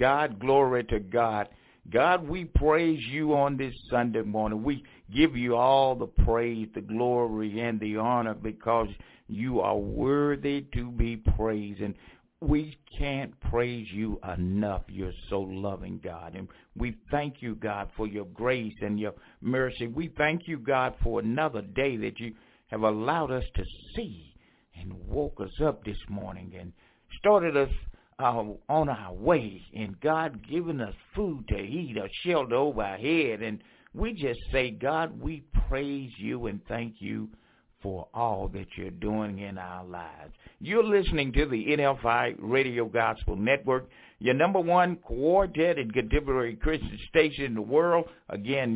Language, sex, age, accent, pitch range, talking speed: English, male, 60-79, American, 105-140 Hz, 160 wpm